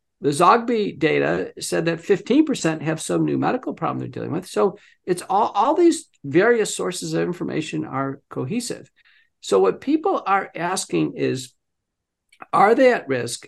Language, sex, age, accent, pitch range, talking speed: English, male, 50-69, American, 155-210 Hz, 155 wpm